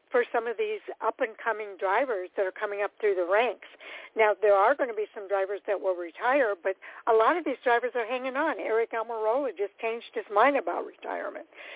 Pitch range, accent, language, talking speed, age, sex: 190-230 Hz, American, English, 210 wpm, 60-79, female